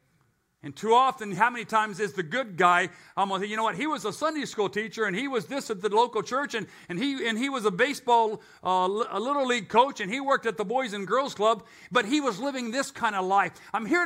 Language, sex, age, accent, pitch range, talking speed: English, male, 50-69, American, 205-265 Hz, 260 wpm